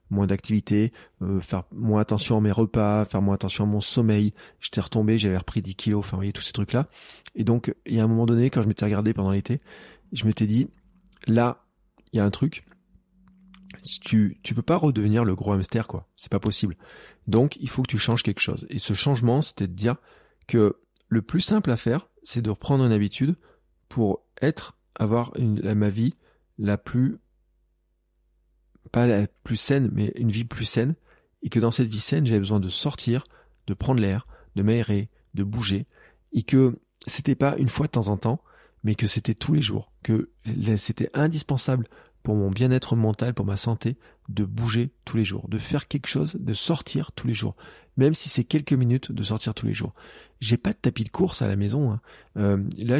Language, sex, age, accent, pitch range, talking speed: French, male, 20-39, French, 105-130 Hz, 205 wpm